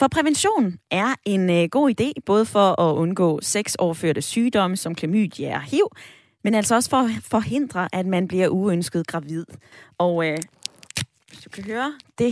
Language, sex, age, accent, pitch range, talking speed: Danish, female, 20-39, native, 180-245 Hz, 170 wpm